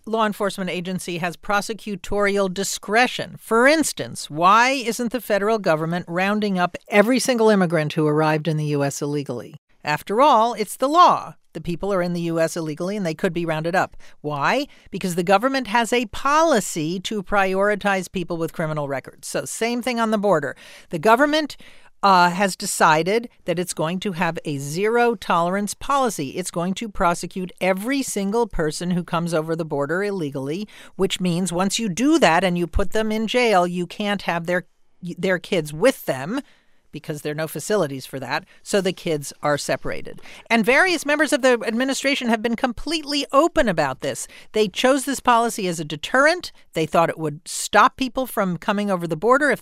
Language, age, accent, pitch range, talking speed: English, 50-69, American, 170-240 Hz, 185 wpm